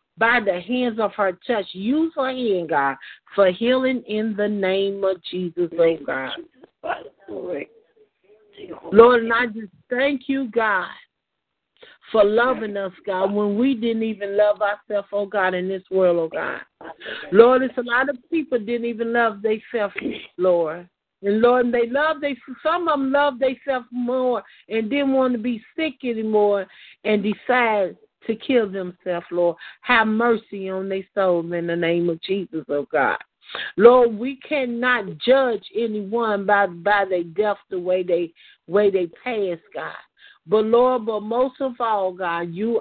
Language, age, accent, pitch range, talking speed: English, 50-69, American, 185-245 Hz, 160 wpm